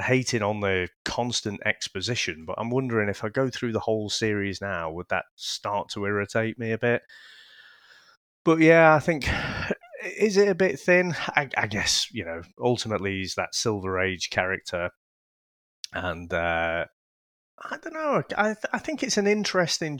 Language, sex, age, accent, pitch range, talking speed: English, male, 30-49, British, 100-145 Hz, 170 wpm